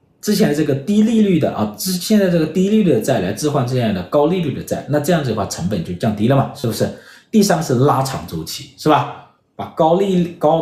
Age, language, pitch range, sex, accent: 50-69, Chinese, 125-195 Hz, male, native